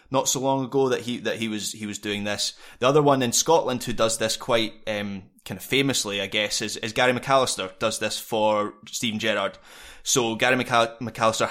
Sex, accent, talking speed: male, British, 210 wpm